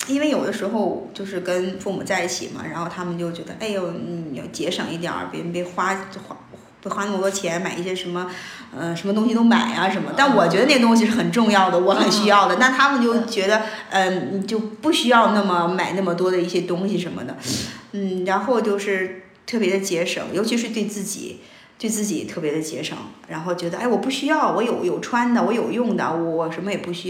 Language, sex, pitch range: Chinese, female, 185-255 Hz